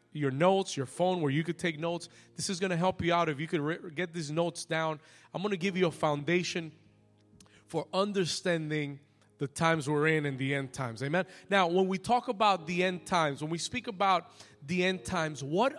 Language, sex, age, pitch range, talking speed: Spanish, male, 30-49, 150-195 Hz, 220 wpm